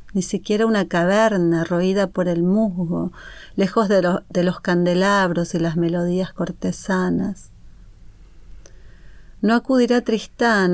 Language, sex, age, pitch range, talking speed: Spanish, female, 40-59, 180-210 Hz, 110 wpm